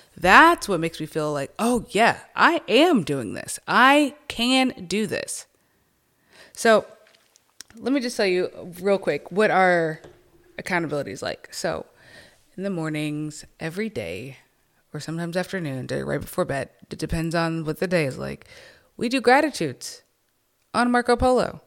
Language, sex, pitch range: English, female, 165-220 Hz